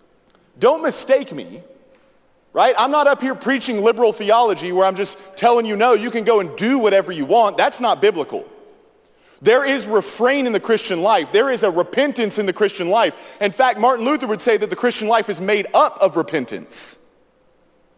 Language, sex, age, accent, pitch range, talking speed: English, male, 40-59, American, 205-275 Hz, 195 wpm